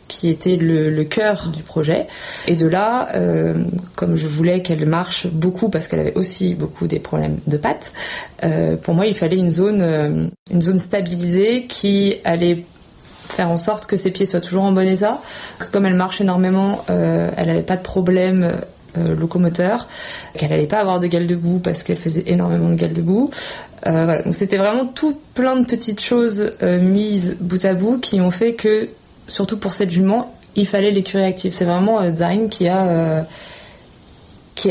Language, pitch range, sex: French, 165-200 Hz, female